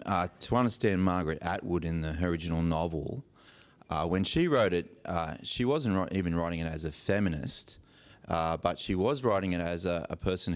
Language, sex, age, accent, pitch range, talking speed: English, male, 30-49, Australian, 85-90 Hz, 190 wpm